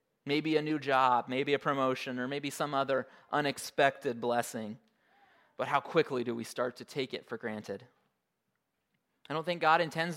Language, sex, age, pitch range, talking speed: English, male, 20-39, 120-150 Hz, 170 wpm